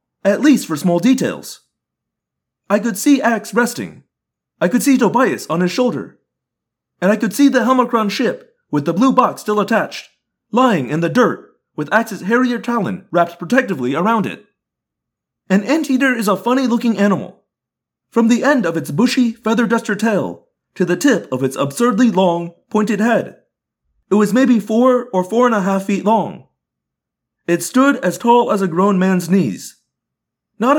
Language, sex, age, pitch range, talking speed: English, male, 30-49, 190-255 Hz, 170 wpm